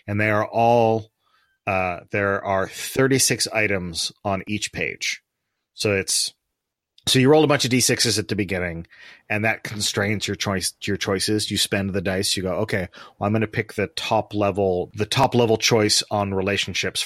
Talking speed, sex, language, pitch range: 185 wpm, male, English, 95-110 Hz